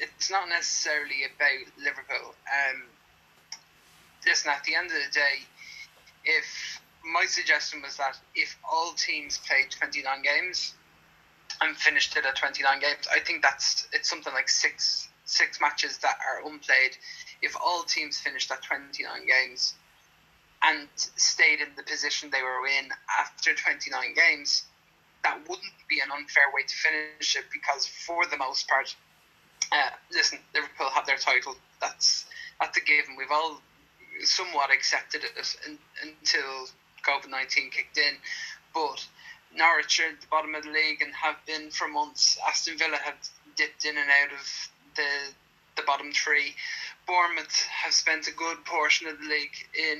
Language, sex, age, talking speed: English, male, 20-39, 165 wpm